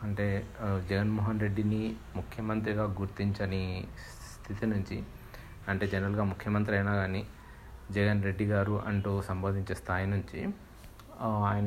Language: Telugu